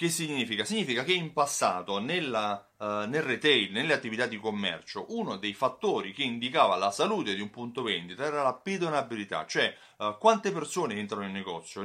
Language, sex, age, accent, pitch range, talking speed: Italian, male, 30-49, native, 110-170 Hz, 175 wpm